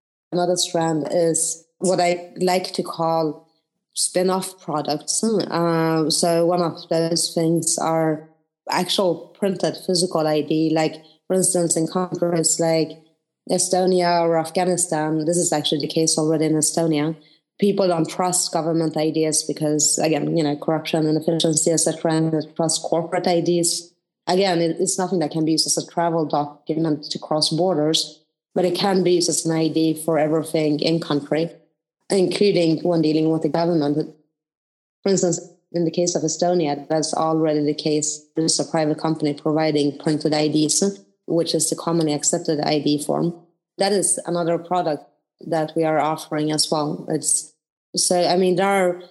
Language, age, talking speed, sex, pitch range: English, 30-49, 160 wpm, female, 155-175 Hz